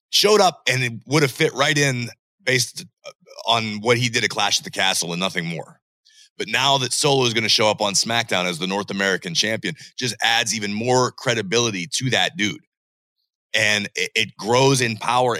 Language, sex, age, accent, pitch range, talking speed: English, male, 30-49, American, 120-165 Hz, 200 wpm